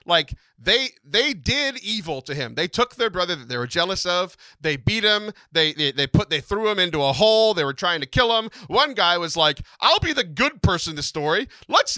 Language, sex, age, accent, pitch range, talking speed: English, male, 40-59, American, 140-200 Hz, 235 wpm